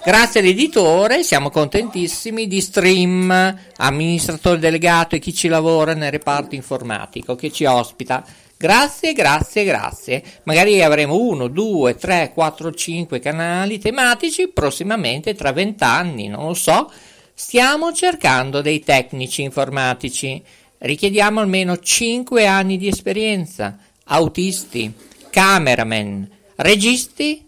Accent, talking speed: native, 110 wpm